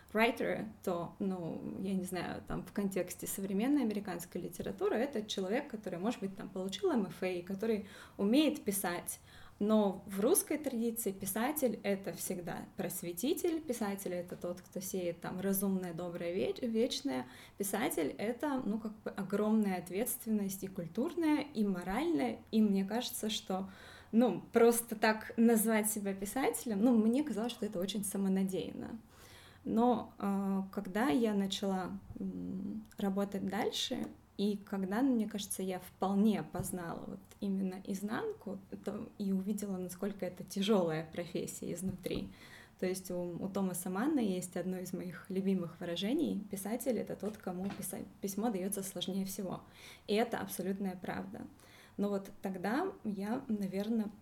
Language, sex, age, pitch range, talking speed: Russian, female, 20-39, 190-230 Hz, 135 wpm